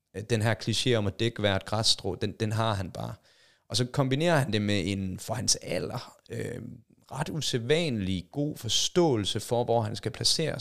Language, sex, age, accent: Danish, male, 30-49, native